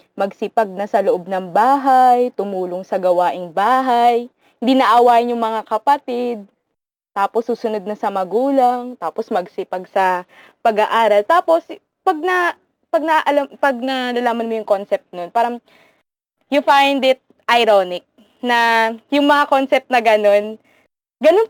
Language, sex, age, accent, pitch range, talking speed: Filipino, female, 20-39, native, 220-285 Hz, 135 wpm